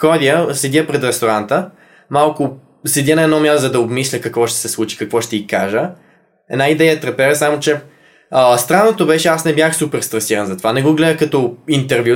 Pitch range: 125-155 Hz